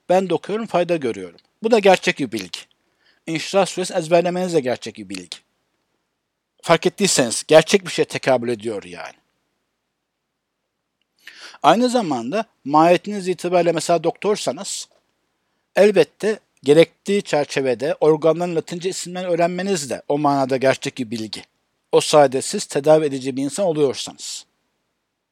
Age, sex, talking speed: 60-79, male, 120 wpm